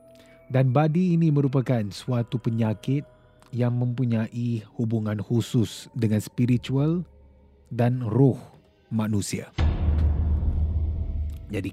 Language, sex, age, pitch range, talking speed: Malay, male, 30-49, 105-130 Hz, 80 wpm